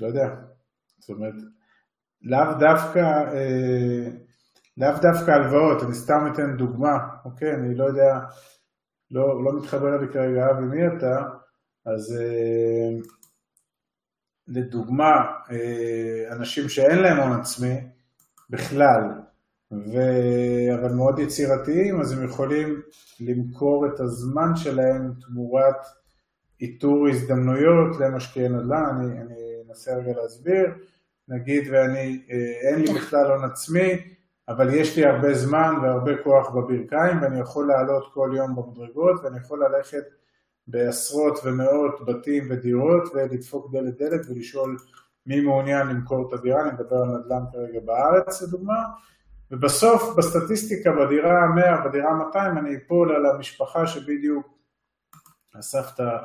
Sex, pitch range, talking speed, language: male, 125-150 Hz, 120 wpm, Hebrew